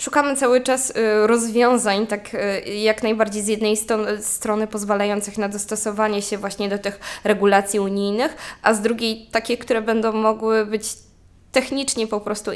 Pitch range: 210-235 Hz